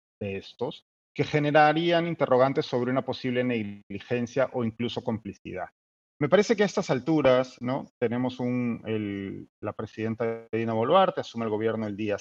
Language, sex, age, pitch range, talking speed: Spanish, male, 30-49, 115-165 Hz, 155 wpm